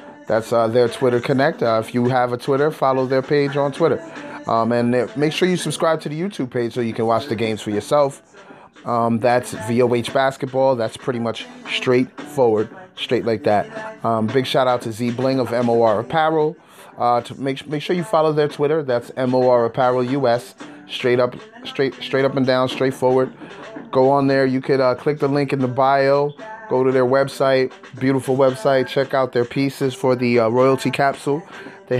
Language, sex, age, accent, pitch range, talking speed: English, male, 20-39, American, 125-150 Hz, 195 wpm